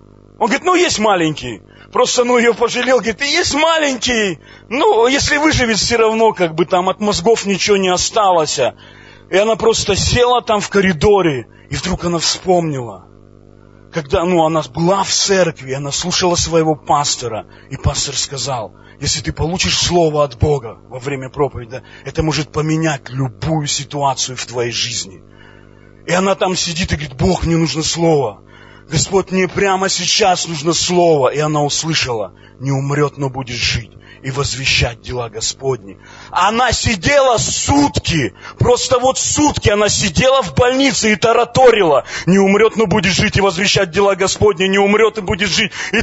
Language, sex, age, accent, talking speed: Russian, male, 30-49, native, 160 wpm